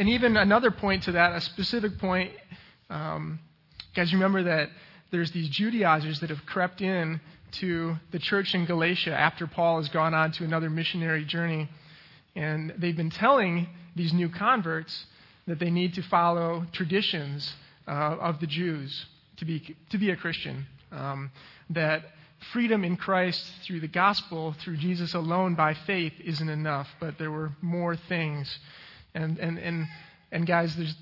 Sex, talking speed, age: male, 160 wpm, 30-49